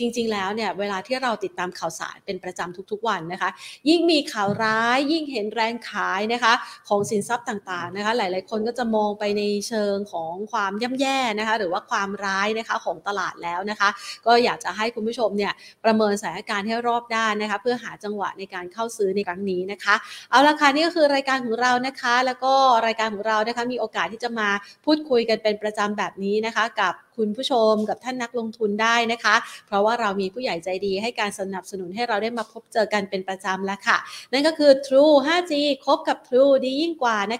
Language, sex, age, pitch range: Thai, female, 30-49, 200-255 Hz